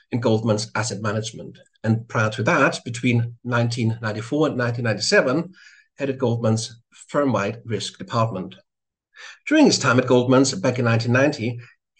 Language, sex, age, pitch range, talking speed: English, male, 60-79, 115-145 Hz, 125 wpm